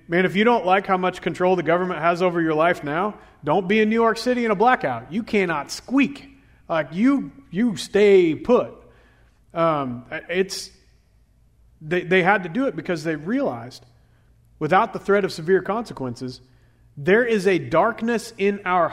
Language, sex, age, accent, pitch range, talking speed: English, male, 40-59, American, 145-210 Hz, 175 wpm